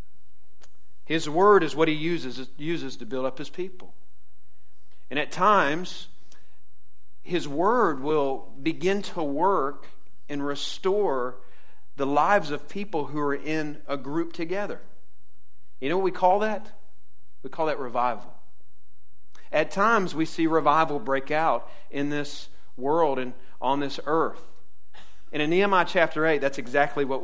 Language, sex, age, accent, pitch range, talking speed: English, male, 50-69, American, 115-160 Hz, 145 wpm